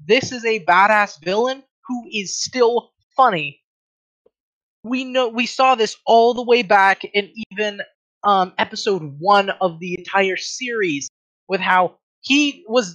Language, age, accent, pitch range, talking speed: English, 20-39, American, 195-250 Hz, 145 wpm